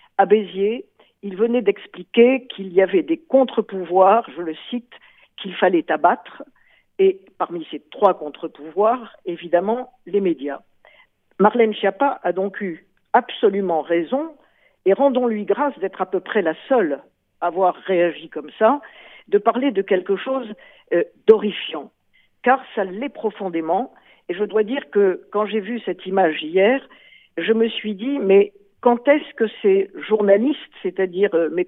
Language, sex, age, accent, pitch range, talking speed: Italian, female, 50-69, French, 185-265 Hz, 150 wpm